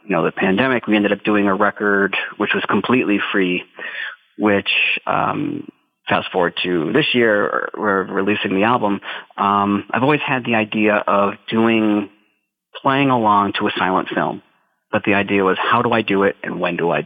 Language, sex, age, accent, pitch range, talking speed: English, male, 30-49, American, 95-105 Hz, 185 wpm